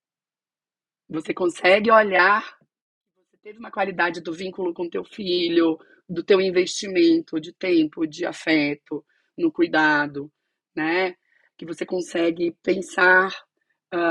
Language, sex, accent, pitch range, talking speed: Portuguese, female, Brazilian, 170-215 Hz, 115 wpm